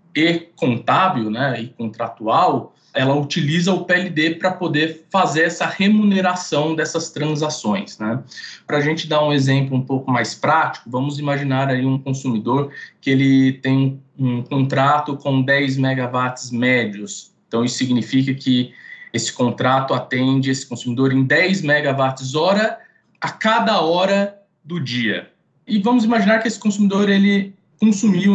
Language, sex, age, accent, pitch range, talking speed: Portuguese, male, 20-39, Brazilian, 130-195 Hz, 140 wpm